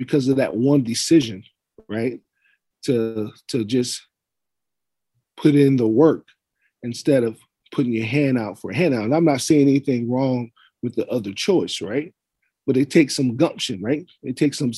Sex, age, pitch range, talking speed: male, 40-59, 120-145 Hz, 170 wpm